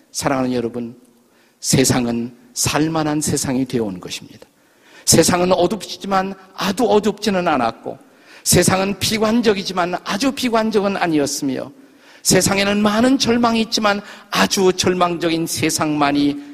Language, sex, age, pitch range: Korean, male, 50-69, 130-195 Hz